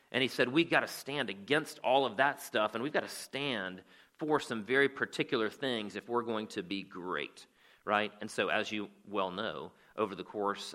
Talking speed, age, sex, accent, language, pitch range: 210 wpm, 40-59, male, American, English, 100-125 Hz